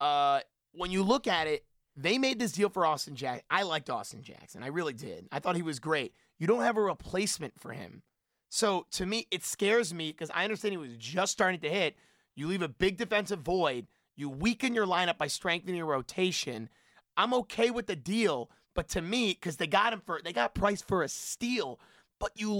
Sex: male